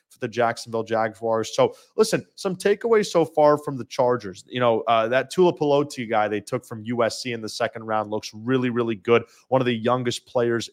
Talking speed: 205 wpm